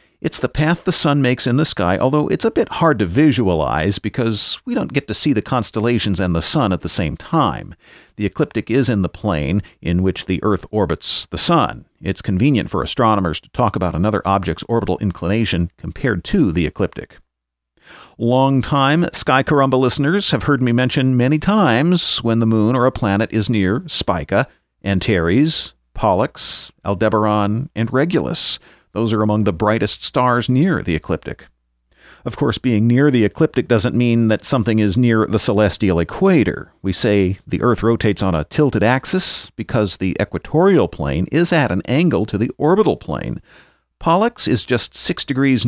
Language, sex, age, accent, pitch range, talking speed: English, male, 40-59, American, 100-135 Hz, 175 wpm